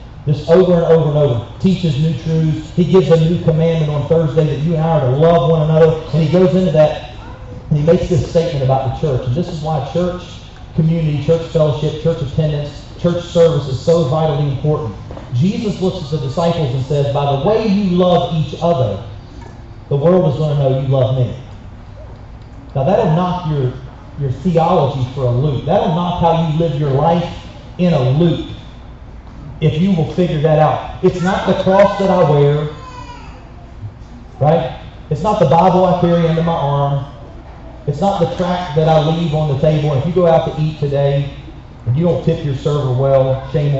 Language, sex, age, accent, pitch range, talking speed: English, male, 40-59, American, 130-165 Hz, 200 wpm